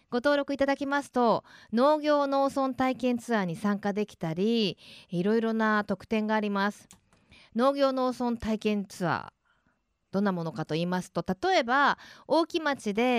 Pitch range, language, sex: 180-260 Hz, Japanese, female